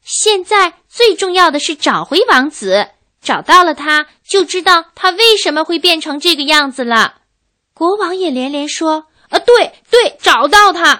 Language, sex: Chinese, female